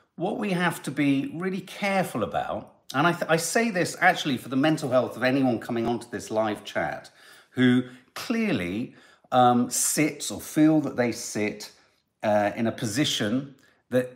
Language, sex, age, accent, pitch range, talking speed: English, male, 50-69, British, 120-170 Hz, 165 wpm